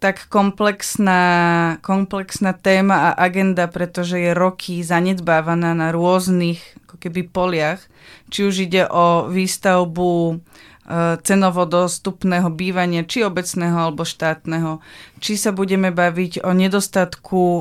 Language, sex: Slovak, female